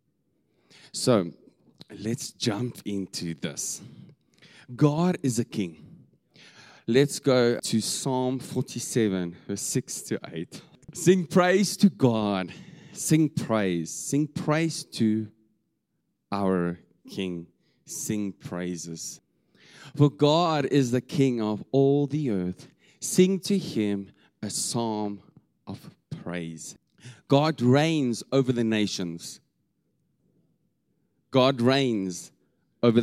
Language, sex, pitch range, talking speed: English, male, 100-140 Hz, 100 wpm